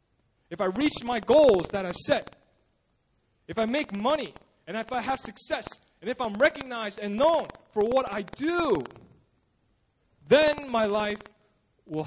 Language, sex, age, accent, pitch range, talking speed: English, male, 20-39, American, 155-230 Hz, 155 wpm